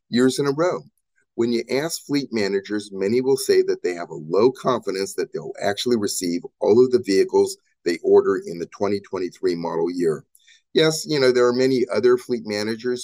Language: English